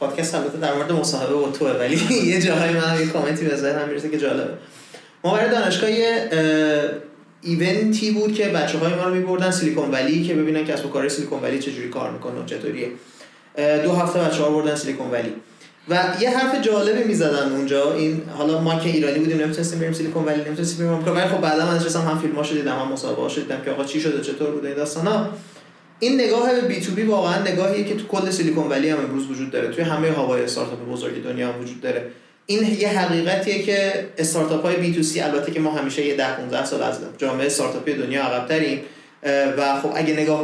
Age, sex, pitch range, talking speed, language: 30-49, male, 140-175 Hz, 200 wpm, Persian